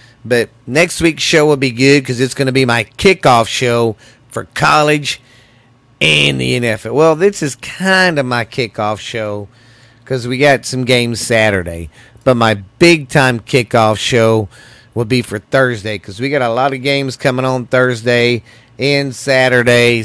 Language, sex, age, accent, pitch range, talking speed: English, male, 40-59, American, 110-130 Hz, 165 wpm